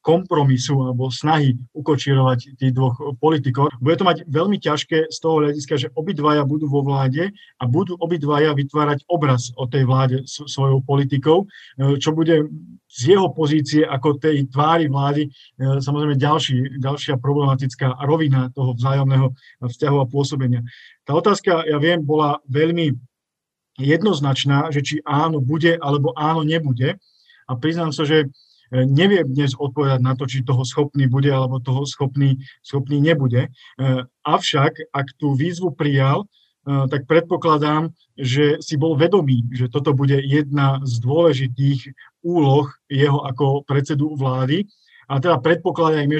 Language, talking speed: Slovak, 135 wpm